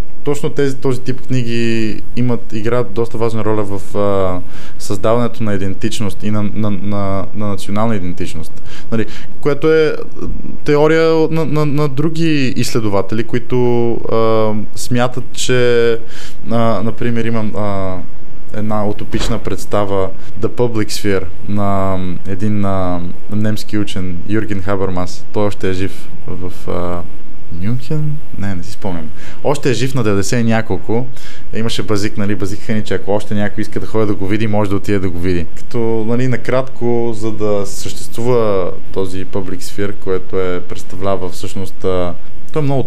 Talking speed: 130 wpm